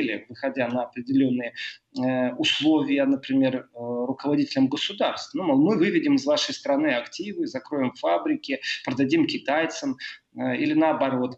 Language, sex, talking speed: Russian, male, 105 wpm